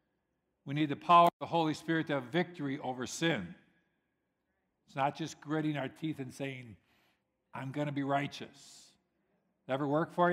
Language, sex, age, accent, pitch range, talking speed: English, male, 50-69, American, 135-170 Hz, 180 wpm